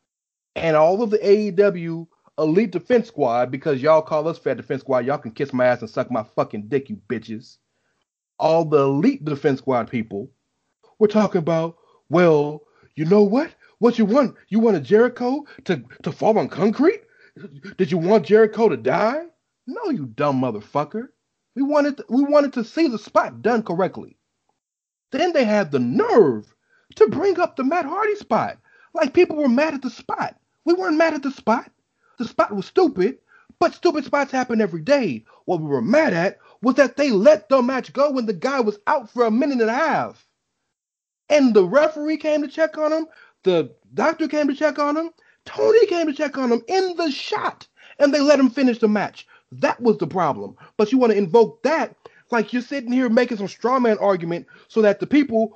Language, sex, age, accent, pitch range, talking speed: English, male, 40-59, American, 185-295 Hz, 200 wpm